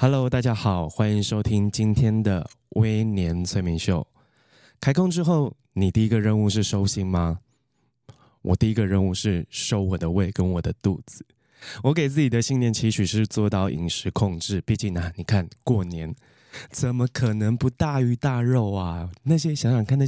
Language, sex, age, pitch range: Chinese, male, 20-39, 95-125 Hz